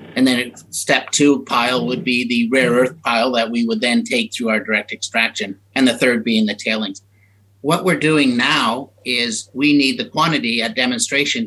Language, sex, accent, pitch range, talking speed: English, male, American, 115-145 Hz, 195 wpm